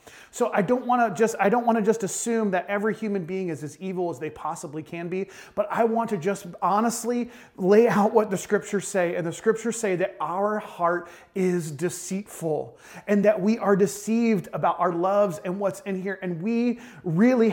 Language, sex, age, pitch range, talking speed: English, male, 30-49, 180-225 Hz, 205 wpm